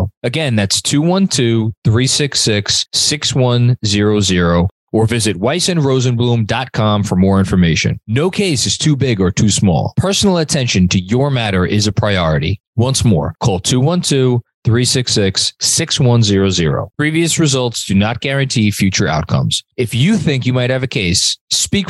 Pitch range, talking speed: 105-150 Hz, 125 wpm